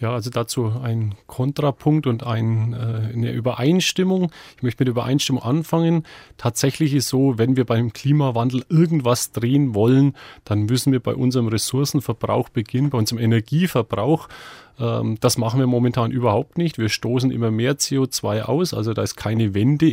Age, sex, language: 30-49, male, German